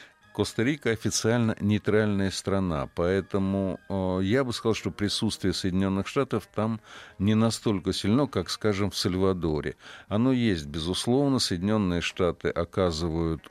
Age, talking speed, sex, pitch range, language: 50-69, 120 wpm, male, 90-105 Hz, Russian